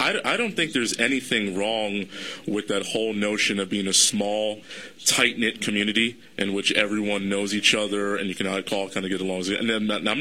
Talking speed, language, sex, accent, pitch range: 195 wpm, English, male, American, 100-110 Hz